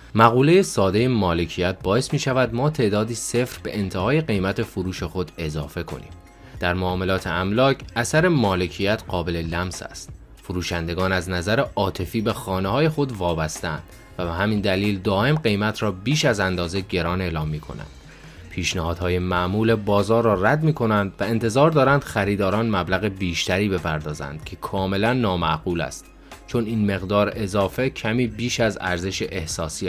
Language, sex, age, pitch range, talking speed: Persian, male, 30-49, 90-115 Hz, 150 wpm